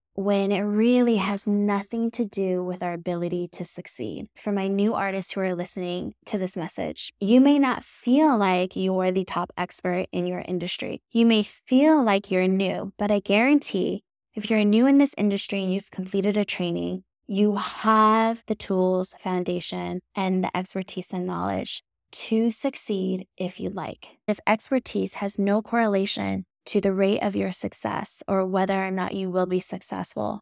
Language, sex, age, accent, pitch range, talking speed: English, female, 10-29, American, 185-210 Hz, 175 wpm